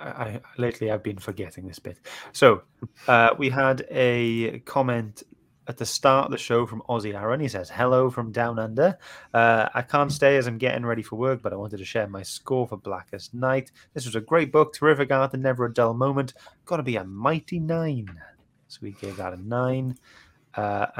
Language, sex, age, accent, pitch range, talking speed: English, male, 30-49, British, 105-130 Hz, 205 wpm